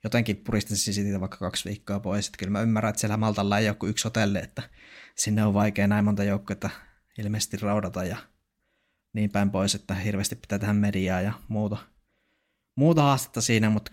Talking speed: 175 wpm